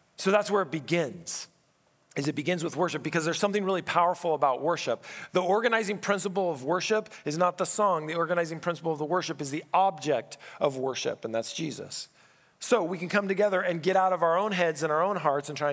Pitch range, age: 135-175 Hz, 40-59